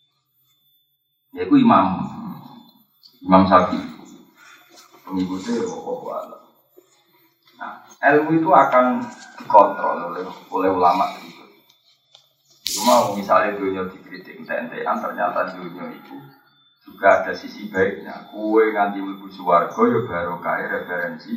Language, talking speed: Indonesian, 100 wpm